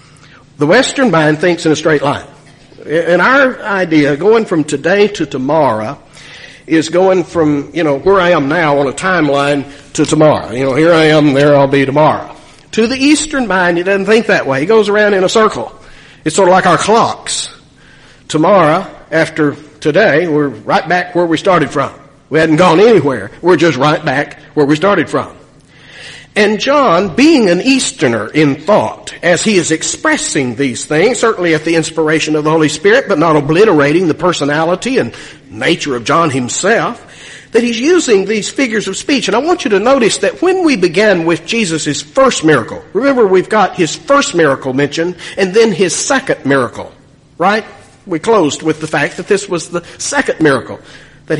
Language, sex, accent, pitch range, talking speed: English, male, American, 145-205 Hz, 185 wpm